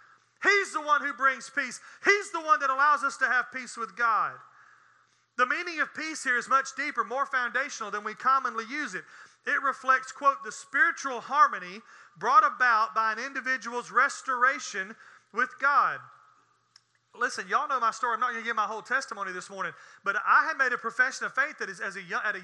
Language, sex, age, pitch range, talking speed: English, male, 40-59, 240-310 Hz, 205 wpm